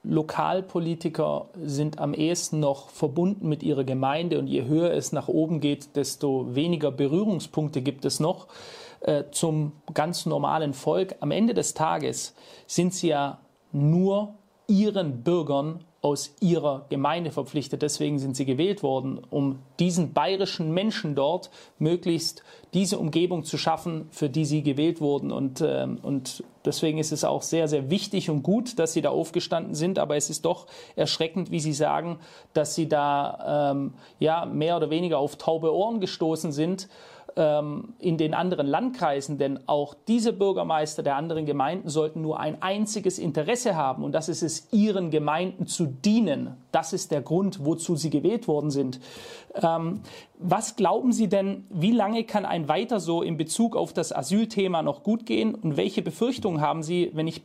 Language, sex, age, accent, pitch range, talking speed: German, male, 40-59, German, 150-185 Hz, 165 wpm